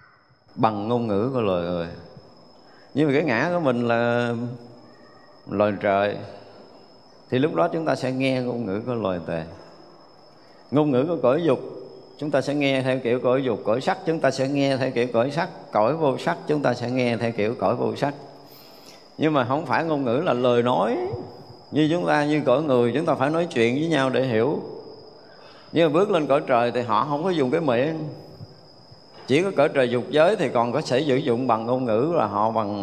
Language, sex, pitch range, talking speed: Vietnamese, male, 105-135 Hz, 210 wpm